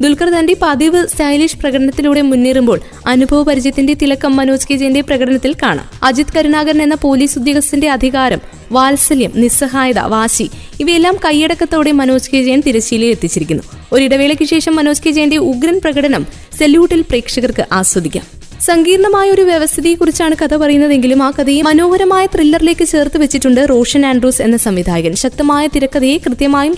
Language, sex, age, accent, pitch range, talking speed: Malayalam, female, 20-39, native, 260-310 Hz, 125 wpm